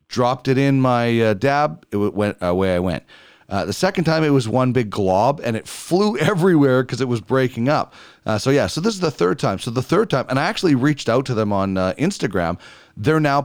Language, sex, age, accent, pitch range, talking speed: English, male, 40-59, American, 105-140 Hz, 240 wpm